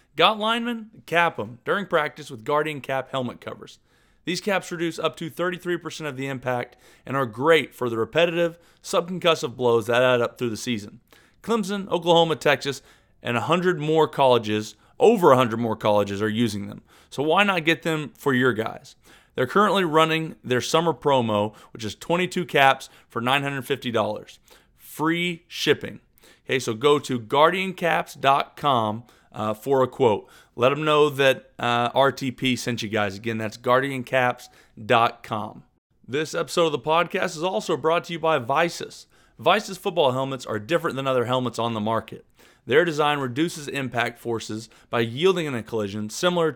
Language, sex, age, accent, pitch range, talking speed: English, male, 30-49, American, 120-165 Hz, 160 wpm